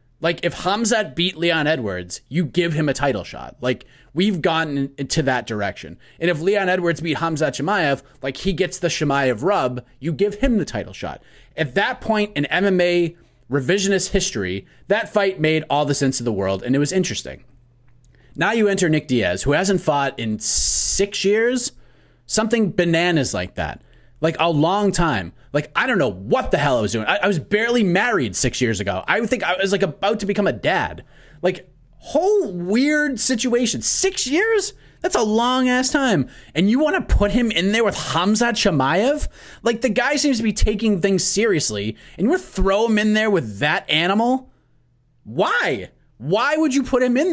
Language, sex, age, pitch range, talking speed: English, male, 30-49, 140-215 Hz, 195 wpm